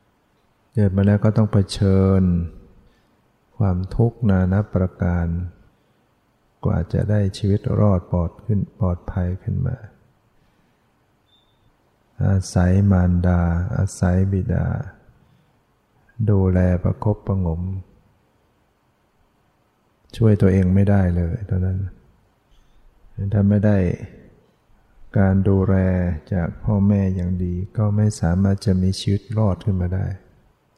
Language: English